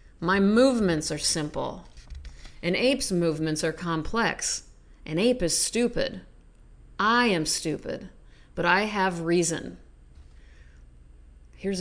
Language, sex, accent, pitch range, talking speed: English, female, American, 155-200 Hz, 105 wpm